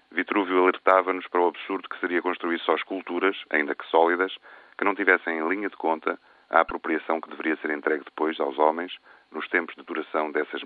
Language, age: Portuguese, 40-59